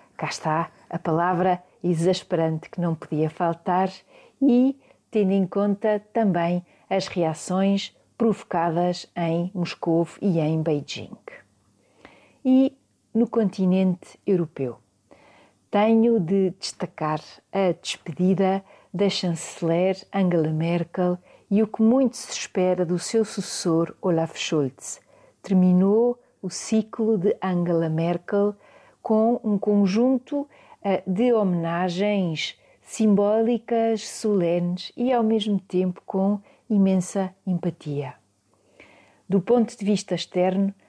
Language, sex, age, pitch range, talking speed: Portuguese, female, 40-59, 170-210 Hz, 105 wpm